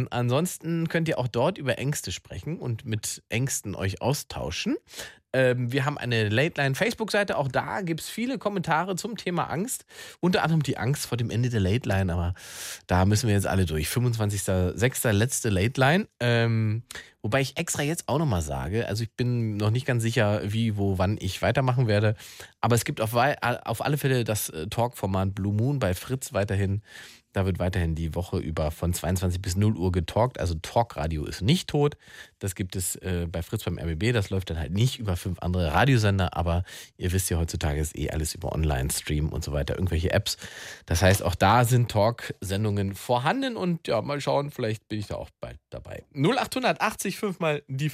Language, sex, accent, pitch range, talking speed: German, male, German, 95-145 Hz, 195 wpm